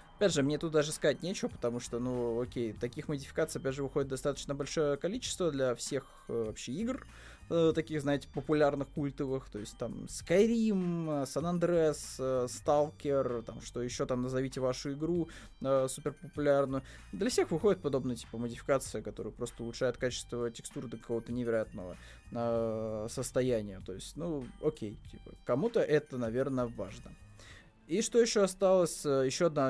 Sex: male